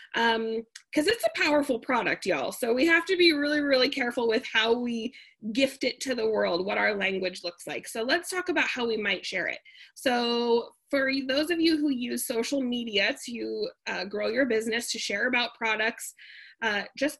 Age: 20-39